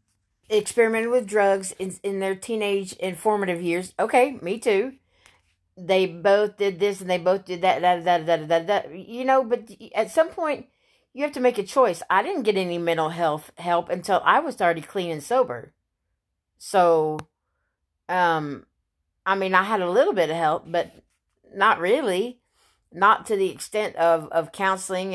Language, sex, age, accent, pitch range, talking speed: English, female, 40-59, American, 165-220 Hz, 175 wpm